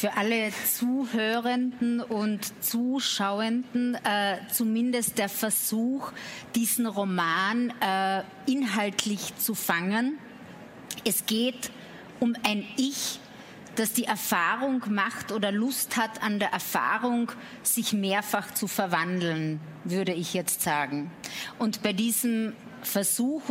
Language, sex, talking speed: German, female, 105 wpm